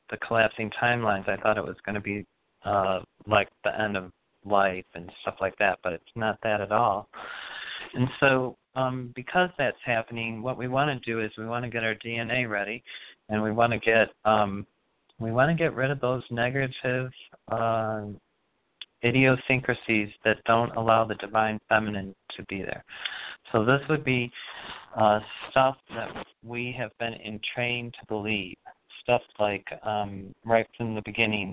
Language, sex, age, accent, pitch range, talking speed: English, male, 40-59, American, 105-130 Hz, 170 wpm